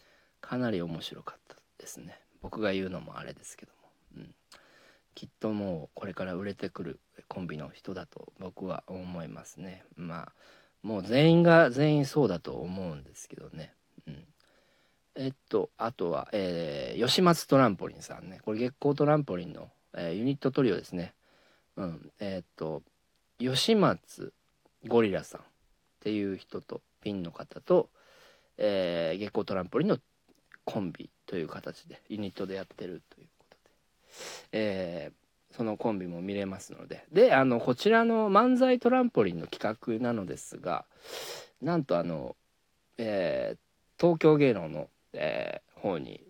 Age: 40-59